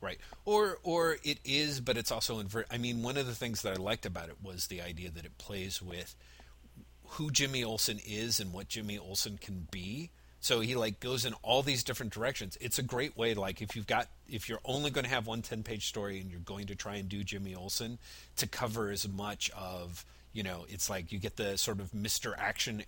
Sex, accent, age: male, American, 40-59